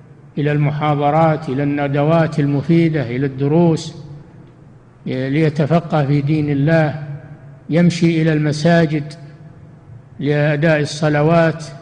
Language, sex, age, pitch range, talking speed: Arabic, male, 60-79, 145-160 Hz, 80 wpm